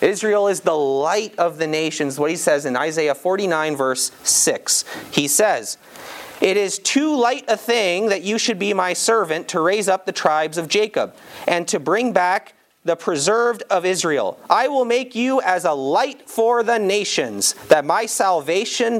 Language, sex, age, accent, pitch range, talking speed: English, male, 30-49, American, 145-205 Hz, 180 wpm